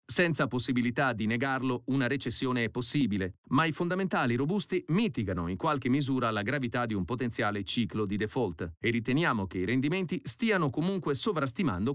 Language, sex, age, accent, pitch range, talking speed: Italian, male, 40-59, native, 115-155 Hz, 160 wpm